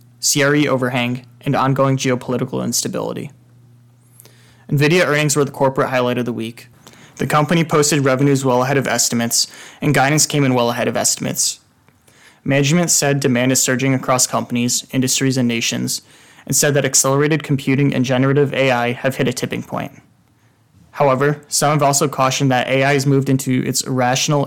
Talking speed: 160 wpm